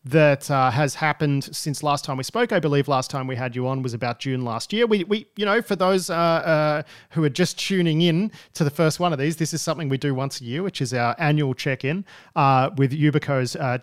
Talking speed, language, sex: 250 wpm, English, male